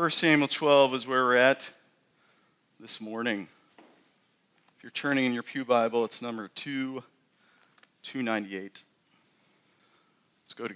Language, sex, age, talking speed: English, male, 40-59, 115 wpm